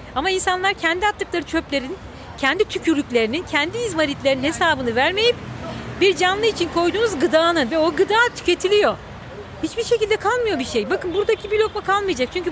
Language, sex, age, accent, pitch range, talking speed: Turkish, female, 40-59, native, 290-405 Hz, 150 wpm